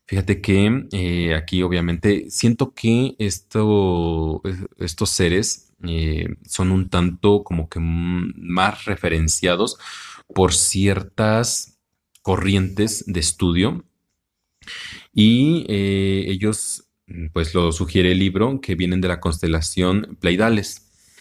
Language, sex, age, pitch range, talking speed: Spanish, male, 30-49, 85-100 Hz, 100 wpm